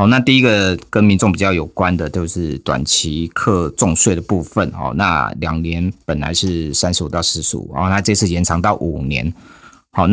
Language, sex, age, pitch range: Chinese, male, 30-49, 85-100 Hz